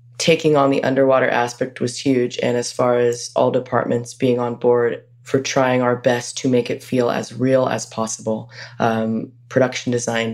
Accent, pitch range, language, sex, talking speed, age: American, 120-130 Hz, English, female, 180 wpm, 20-39